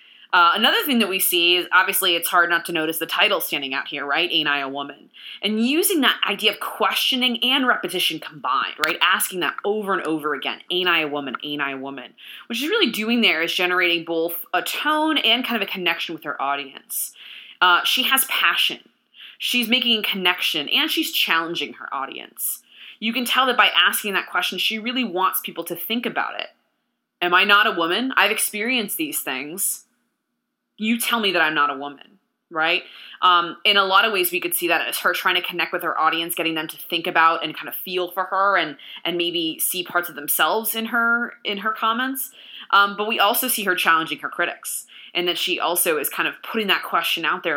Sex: female